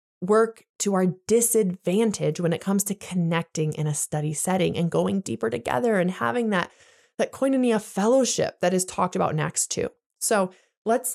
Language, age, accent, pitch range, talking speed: English, 20-39, American, 180-240 Hz, 165 wpm